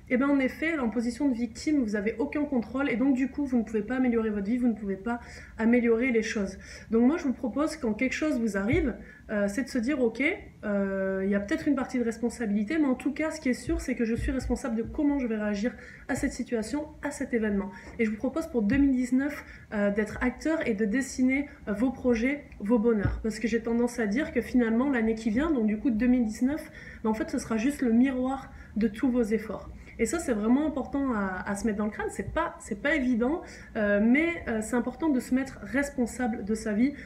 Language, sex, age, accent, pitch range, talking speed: French, female, 20-39, French, 225-275 Hz, 250 wpm